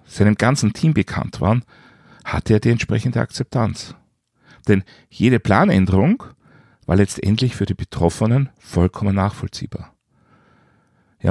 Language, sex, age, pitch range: German, male, 40-59, 100-125 Hz